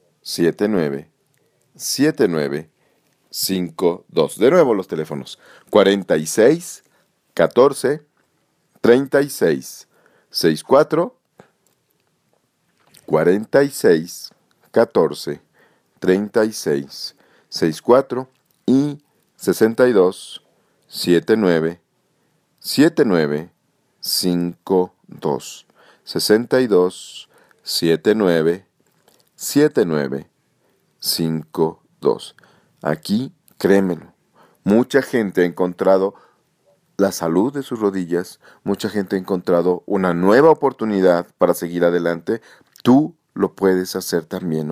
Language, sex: Spanish, male